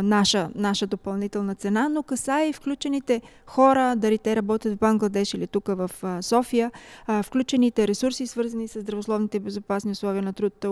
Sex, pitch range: female, 205-260 Hz